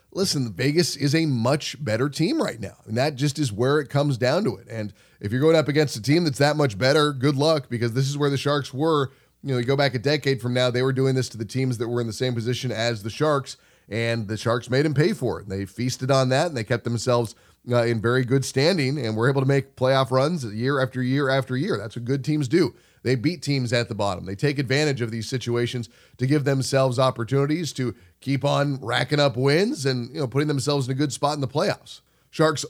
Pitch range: 120-145 Hz